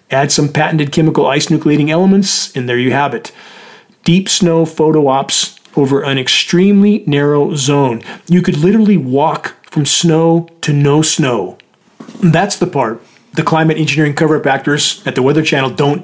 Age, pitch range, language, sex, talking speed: 40-59, 140-175 Hz, English, male, 160 wpm